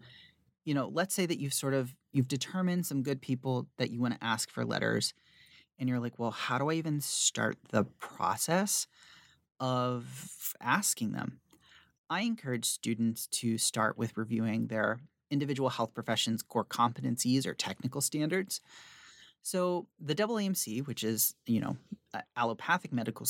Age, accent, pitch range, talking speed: 30-49, American, 115-150 Hz, 150 wpm